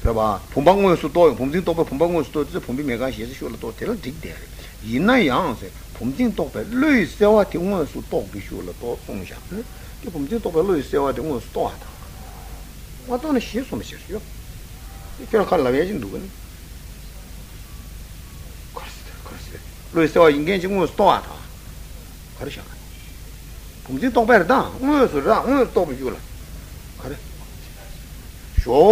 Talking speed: 45 wpm